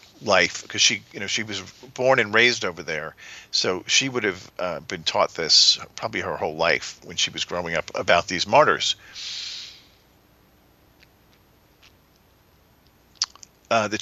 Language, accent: English, American